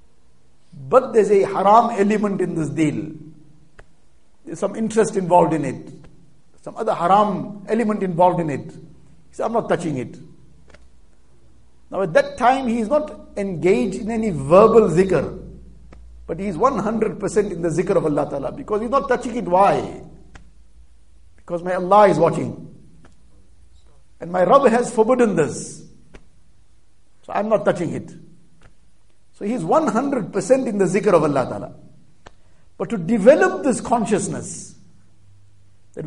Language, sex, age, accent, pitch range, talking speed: English, male, 60-79, Indian, 140-225 Hz, 140 wpm